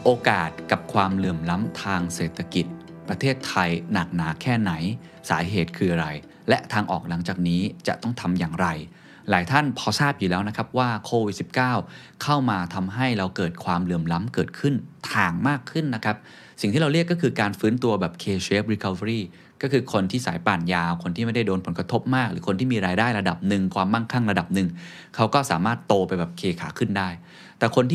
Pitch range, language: 90-125 Hz, Thai